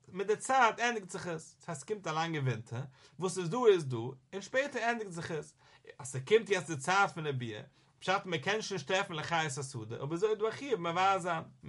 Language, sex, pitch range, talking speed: English, male, 140-195 Hz, 85 wpm